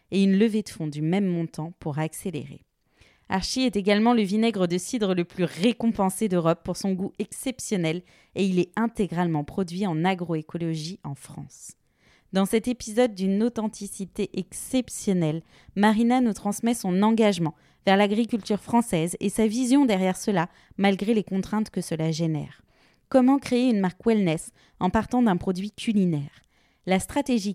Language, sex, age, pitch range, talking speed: French, female, 20-39, 170-220 Hz, 155 wpm